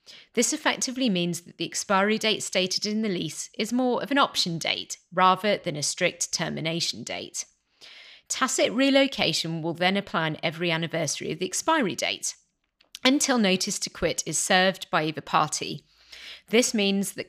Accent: British